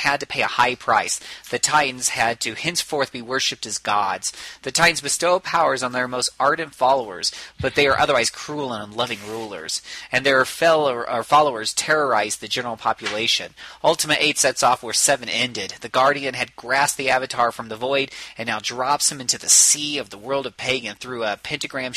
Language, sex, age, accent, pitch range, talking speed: English, male, 30-49, American, 115-145 Hz, 195 wpm